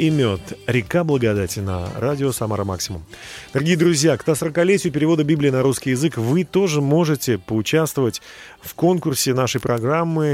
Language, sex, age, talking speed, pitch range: Russian, male, 30-49, 150 wpm, 105-155 Hz